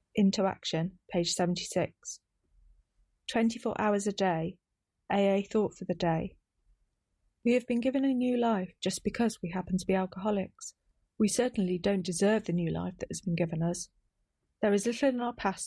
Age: 40-59